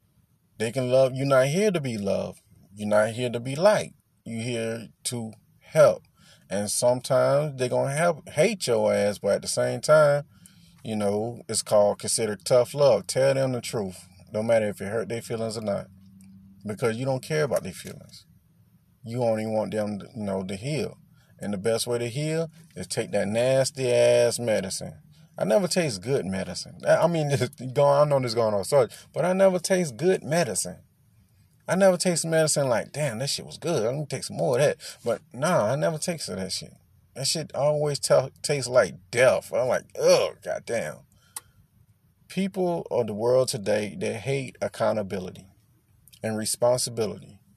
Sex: male